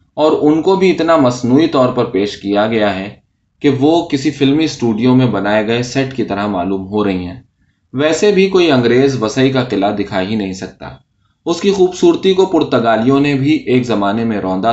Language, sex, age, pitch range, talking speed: Urdu, male, 20-39, 105-145 Hz, 200 wpm